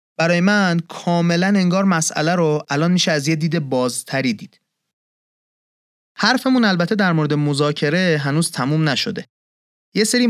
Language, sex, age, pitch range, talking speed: Persian, male, 30-49, 140-195 Hz, 135 wpm